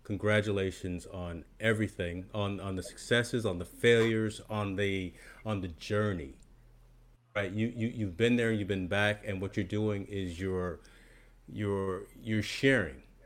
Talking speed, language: 150 wpm, English